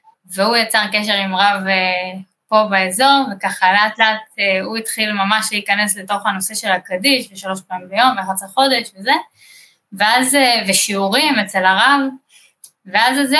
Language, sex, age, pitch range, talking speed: Hebrew, female, 20-39, 190-260 Hz, 135 wpm